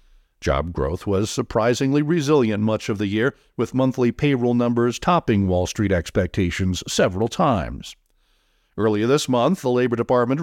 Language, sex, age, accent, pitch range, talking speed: English, male, 50-69, American, 105-135 Hz, 145 wpm